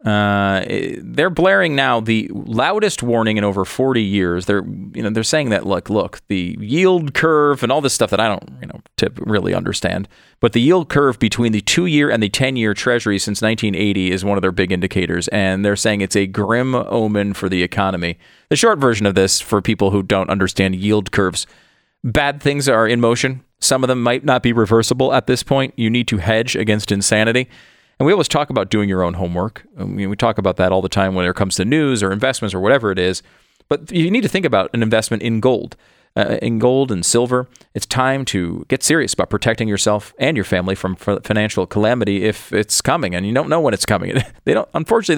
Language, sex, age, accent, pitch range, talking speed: English, male, 40-59, American, 100-125 Hz, 225 wpm